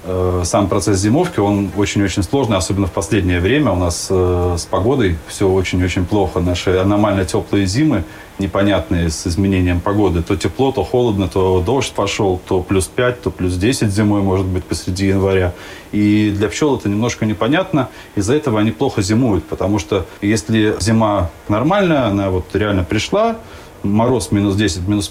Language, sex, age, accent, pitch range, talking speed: Russian, male, 30-49, native, 95-130 Hz, 160 wpm